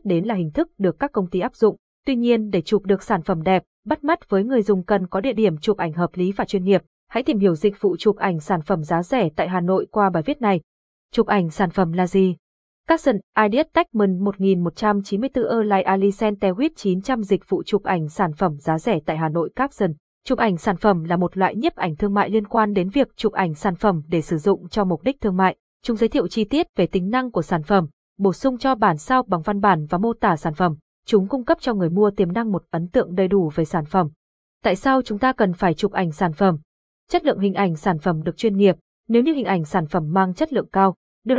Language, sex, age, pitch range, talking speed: Vietnamese, female, 20-39, 180-225 Hz, 255 wpm